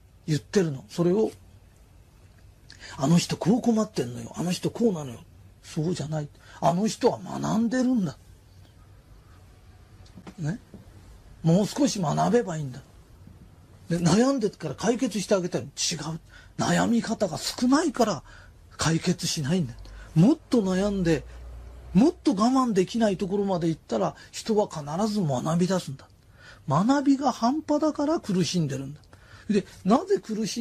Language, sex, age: Japanese, male, 40-59